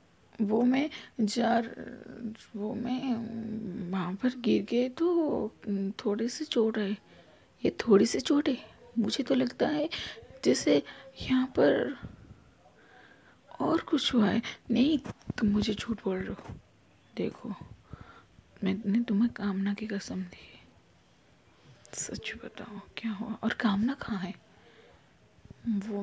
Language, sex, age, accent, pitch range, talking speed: Hindi, female, 20-39, native, 210-255 Hz, 105 wpm